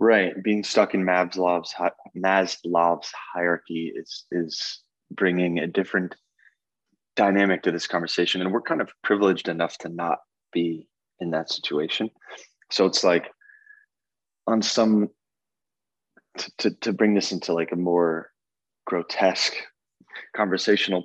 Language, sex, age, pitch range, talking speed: English, male, 20-39, 85-105 Hz, 125 wpm